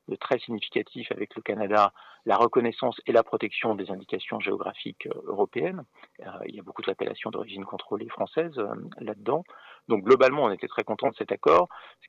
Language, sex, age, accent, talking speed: French, male, 50-69, French, 175 wpm